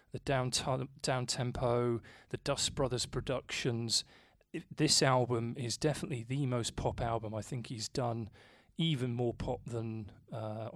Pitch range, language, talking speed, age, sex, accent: 115-140 Hz, English, 150 wpm, 30-49, male, British